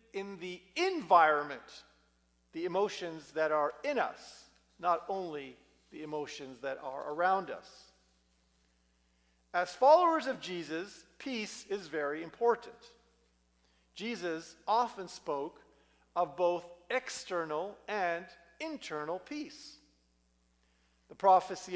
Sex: male